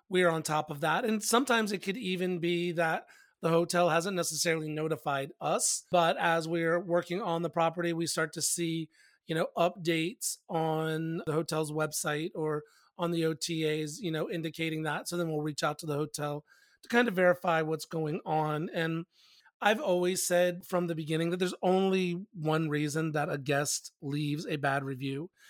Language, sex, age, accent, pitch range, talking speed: English, male, 30-49, American, 155-180 Hz, 185 wpm